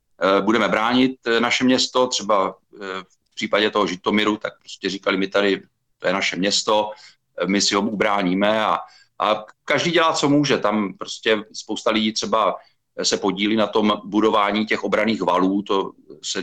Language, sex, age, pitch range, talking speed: Czech, male, 40-59, 95-105 Hz, 155 wpm